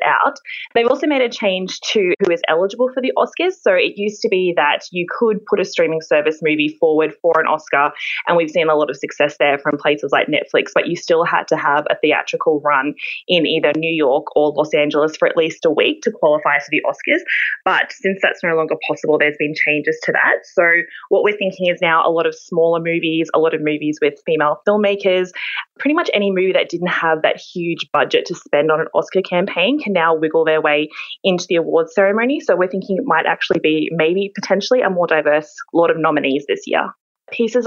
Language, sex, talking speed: English, female, 225 wpm